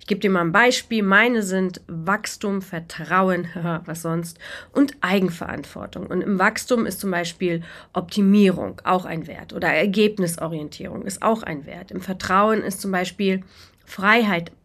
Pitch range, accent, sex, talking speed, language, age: 175-225 Hz, German, female, 150 wpm, German, 40-59